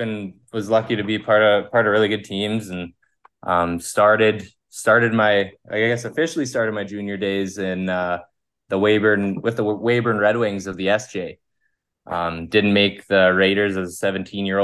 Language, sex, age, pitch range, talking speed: English, male, 20-39, 95-105 Hz, 185 wpm